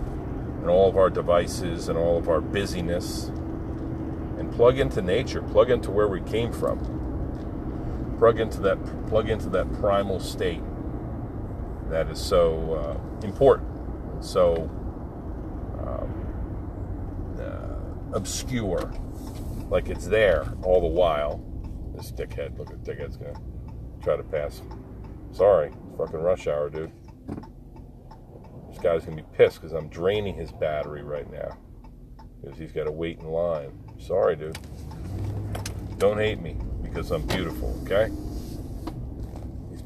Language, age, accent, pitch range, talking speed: English, 50-69, American, 80-115 Hz, 130 wpm